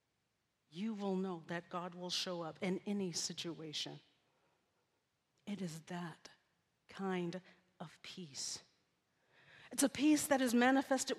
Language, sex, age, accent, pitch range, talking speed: English, female, 40-59, American, 170-230 Hz, 125 wpm